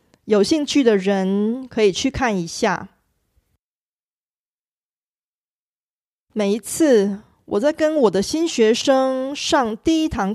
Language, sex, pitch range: Korean, female, 195-280 Hz